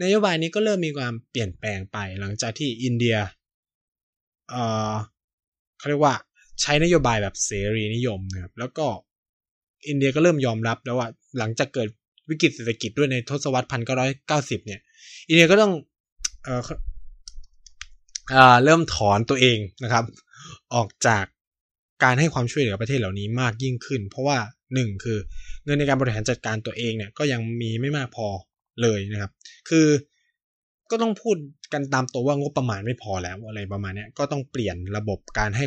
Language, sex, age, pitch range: Thai, male, 20-39, 105-145 Hz